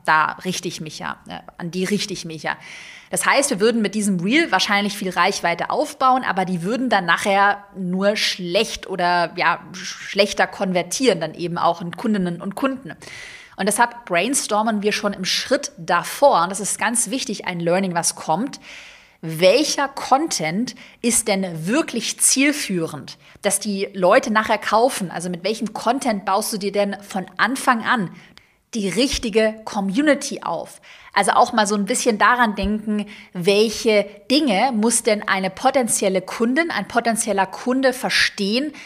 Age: 30-49